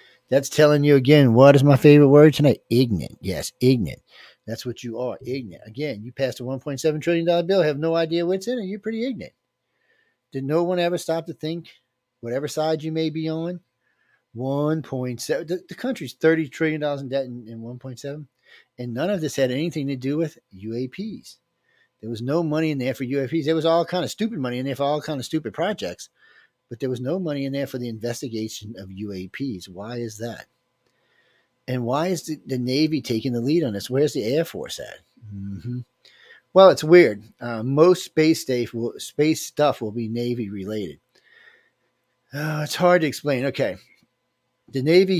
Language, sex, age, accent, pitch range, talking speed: English, male, 40-59, American, 120-160 Hz, 190 wpm